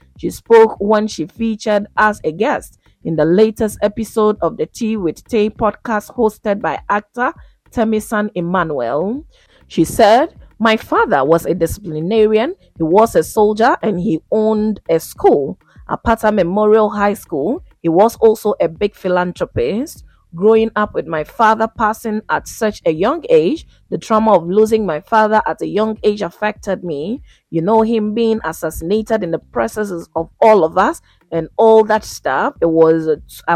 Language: English